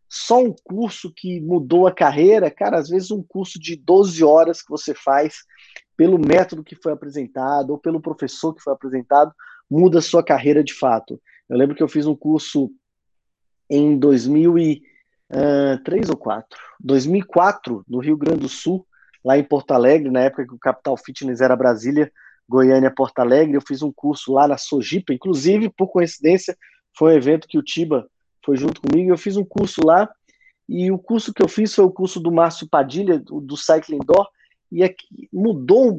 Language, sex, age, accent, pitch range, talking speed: Portuguese, male, 20-39, Brazilian, 145-195 Hz, 180 wpm